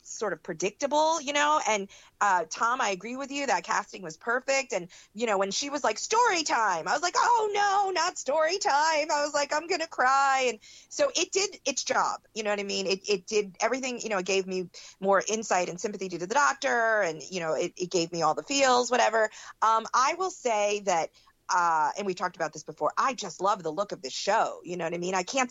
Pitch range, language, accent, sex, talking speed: 190-270 Hz, English, American, female, 245 wpm